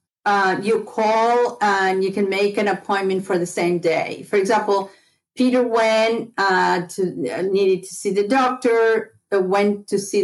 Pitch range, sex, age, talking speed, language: 190-230 Hz, female, 50-69, 165 wpm, English